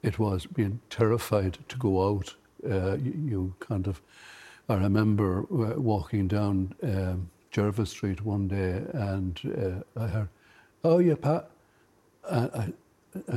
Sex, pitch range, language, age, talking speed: male, 95-115 Hz, English, 60-79, 130 wpm